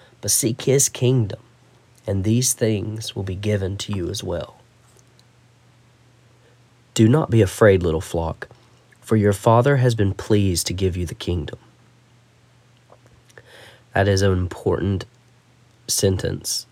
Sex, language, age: male, English, 30-49